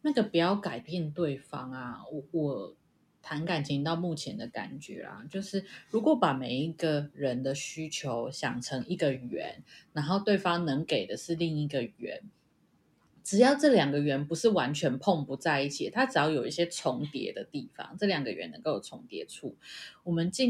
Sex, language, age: female, Chinese, 20-39